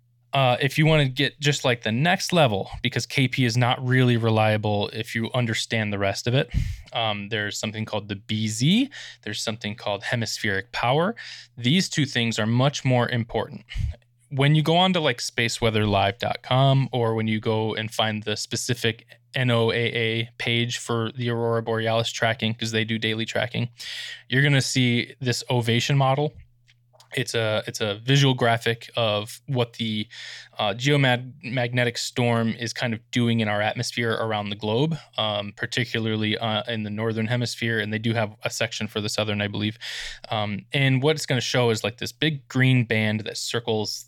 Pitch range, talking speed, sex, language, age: 110-125 Hz, 180 wpm, male, English, 20-39